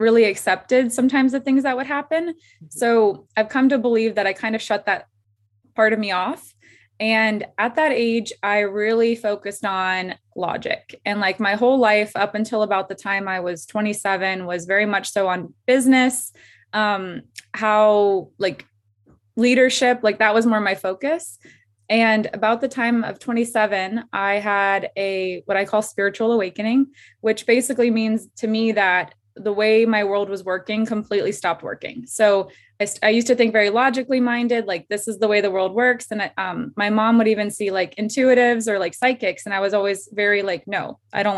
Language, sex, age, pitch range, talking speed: English, female, 20-39, 195-230 Hz, 185 wpm